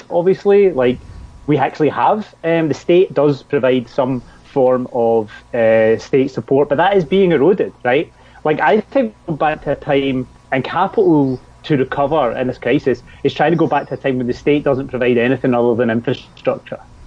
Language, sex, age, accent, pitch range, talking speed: English, male, 30-49, British, 120-150 Hz, 185 wpm